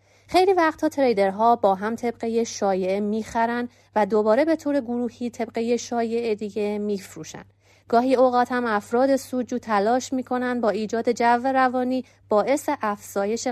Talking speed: 140 wpm